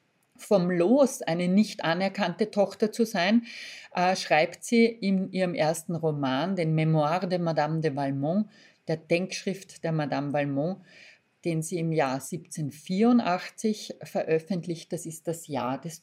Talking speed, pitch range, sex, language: 135 wpm, 160-220 Hz, female, German